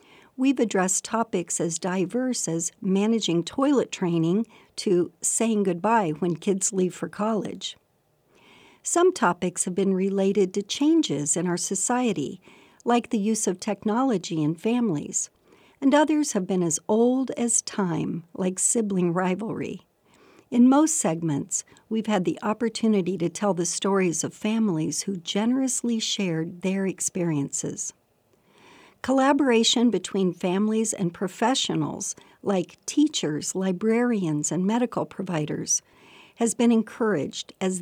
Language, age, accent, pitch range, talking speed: English, 60-79, American, 180-235 Hz, 125 wpm